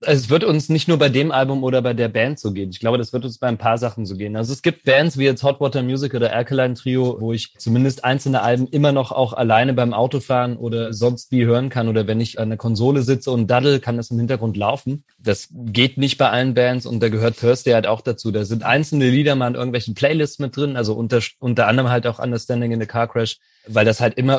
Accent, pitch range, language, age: German, 115-130 Hz, German, 30-49